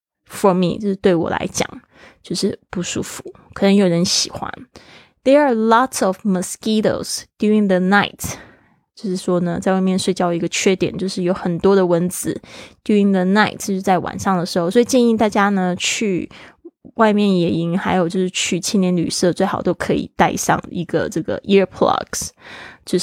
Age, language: 20-39, Chinese